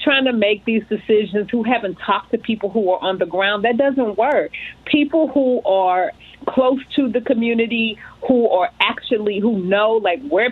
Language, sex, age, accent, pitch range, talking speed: English, female, 40-59, American, 205-260 Hz, 185 wpm